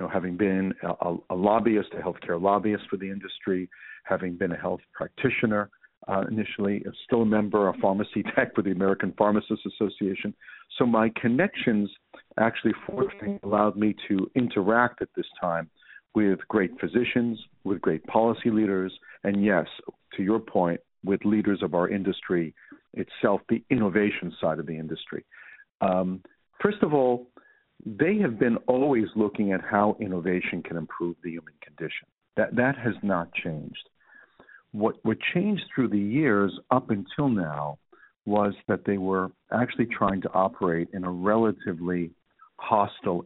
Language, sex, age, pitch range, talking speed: English, male, 50-69, 95-115 Hz, 150 wpm